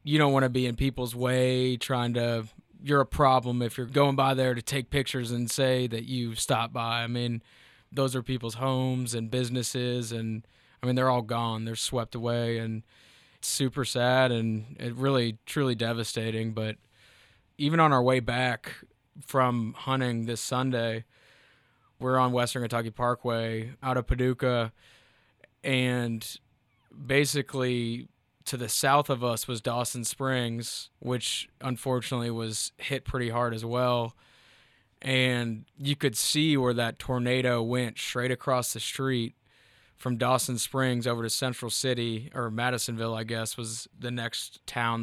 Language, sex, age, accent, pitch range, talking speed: English, male, 20-39, American, 115-130 Hz, 155 wpm